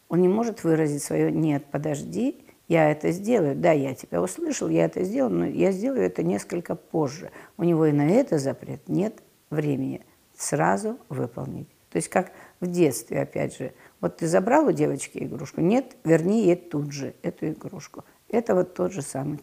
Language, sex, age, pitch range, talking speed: Russian, female, 50-69, 145-195 Hz, 180 wpm